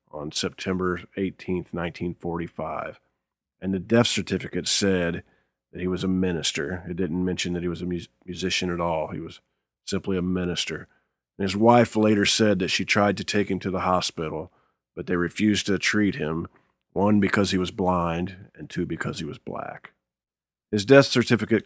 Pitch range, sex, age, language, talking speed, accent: 85-100 Hz, male, 40-59, English, 170 wpm, American